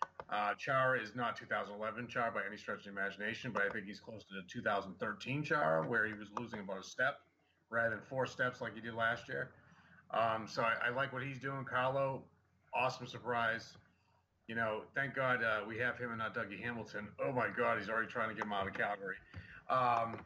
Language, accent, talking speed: English, American, 215 wpm